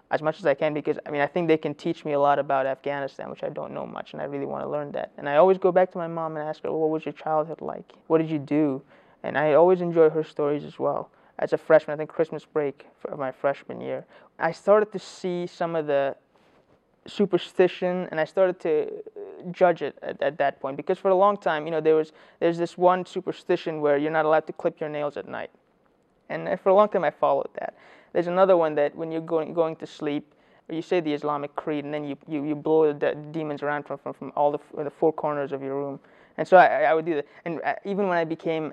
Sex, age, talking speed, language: male, 20-39, 260 wpm, English